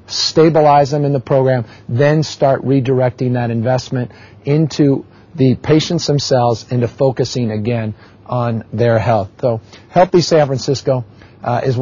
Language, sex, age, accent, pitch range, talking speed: English, male, 50-69, American, 120-140 Hz, 130 wpm